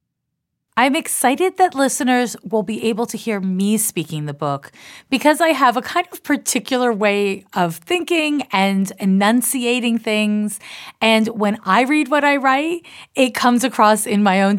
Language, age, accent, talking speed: English, 30-49, American, 160 wpm